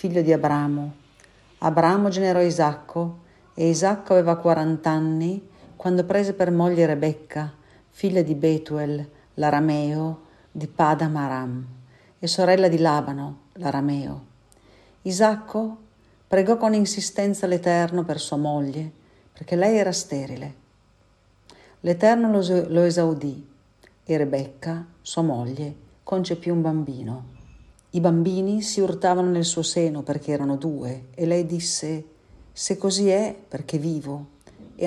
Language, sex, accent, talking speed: Italian, female, native, 115 wpm